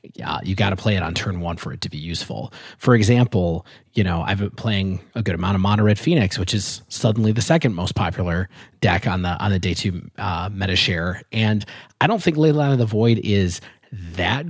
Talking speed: 230 wpm